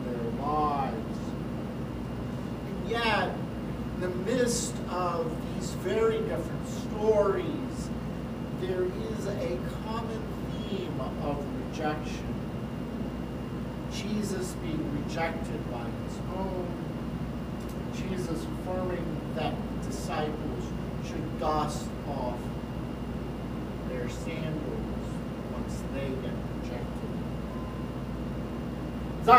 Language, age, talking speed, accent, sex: English, 50-69, 75 wpm, American, male